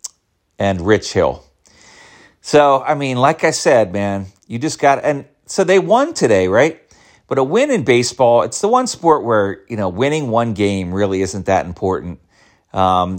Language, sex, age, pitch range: English, male, 40-59, 95-115 Hz